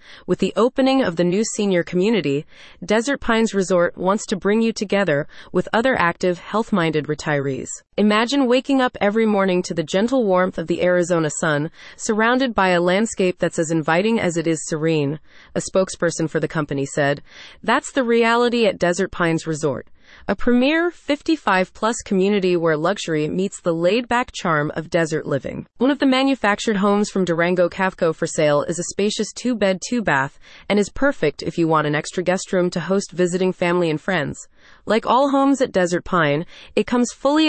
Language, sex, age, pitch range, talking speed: English, female, 30-49, 170-225 Hz, 180 wpm